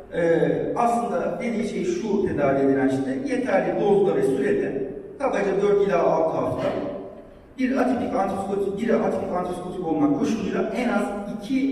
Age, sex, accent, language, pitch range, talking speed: 40-59, male, native, Turkish, 150-215 Hz, 145 wpm